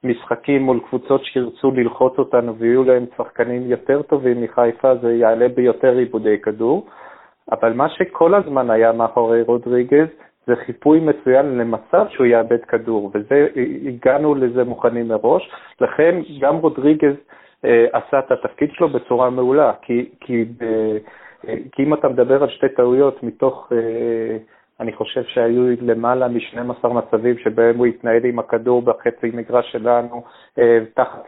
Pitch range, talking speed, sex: 120-140 Hz, 140 wpm, male